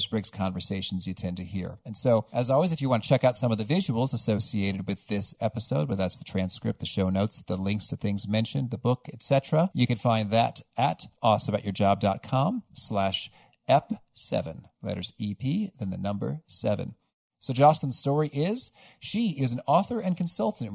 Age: 40-59